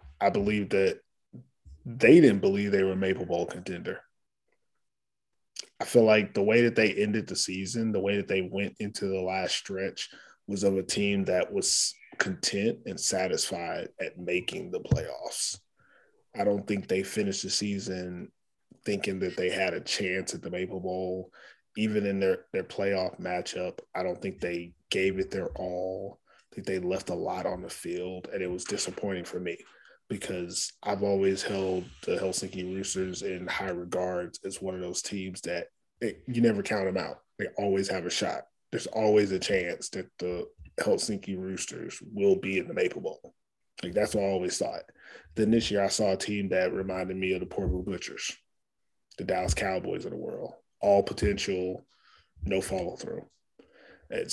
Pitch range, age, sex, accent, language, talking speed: 95-105 Hz, 20-39, male, American, English, 180 wpm